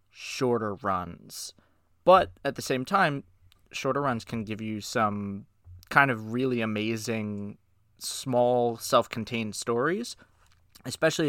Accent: American